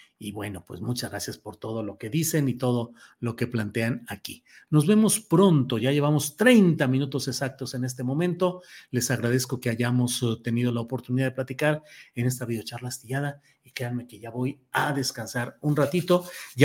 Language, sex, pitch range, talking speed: Spanish, male, 125-175 Hz, 180 wpm